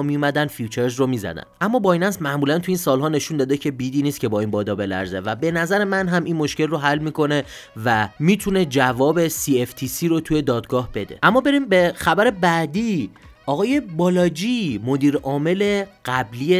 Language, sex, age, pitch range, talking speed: Persian, male, 30-49, 130-165 Hz, 180 wpm